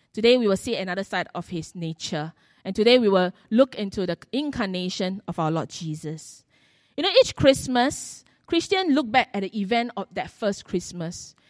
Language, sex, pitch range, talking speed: English, female, 180-255 Hz, 185 wpm